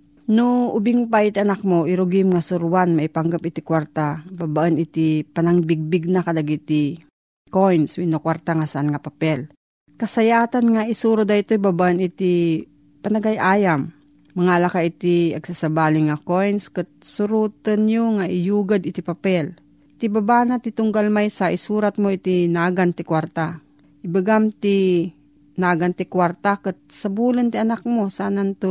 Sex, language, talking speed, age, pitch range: female, Filipino, 135 wpm, 40-59, 170-210 Hz